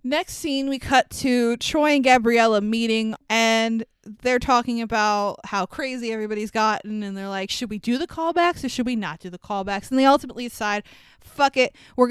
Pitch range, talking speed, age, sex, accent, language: 215-265 Hz, 195 wpm, 20-39, female, American, English